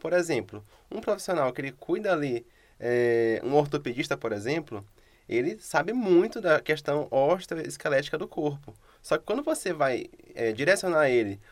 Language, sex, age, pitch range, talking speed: Portuguese, male, 20-39, 130-175 Hz, 150 wpm